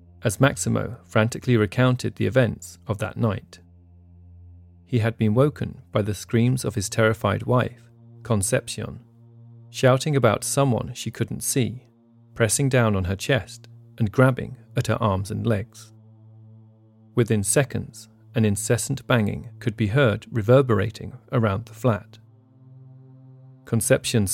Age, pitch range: 40-59, 95-125 Hz